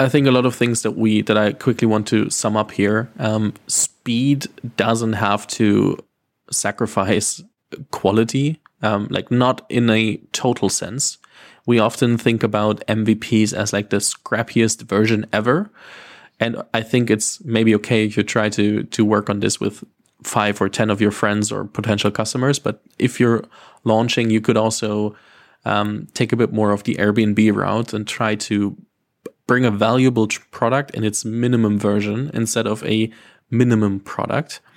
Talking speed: 165 wpm